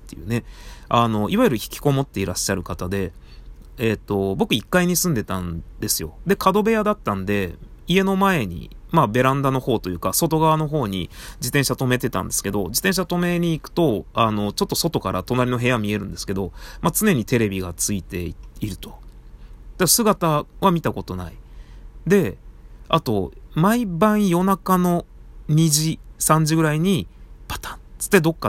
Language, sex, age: Japanese, male, 30-49